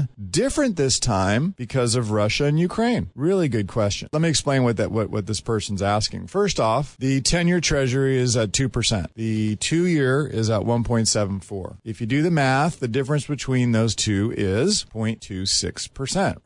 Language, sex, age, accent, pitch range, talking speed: English, male, 40-59, American, 105-135 Hz, 170 wpm